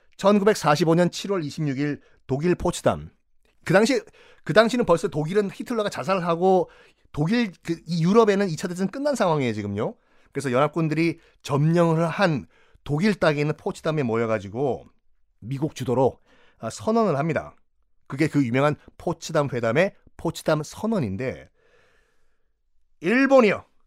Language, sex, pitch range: Korean, male, 145-215 Hz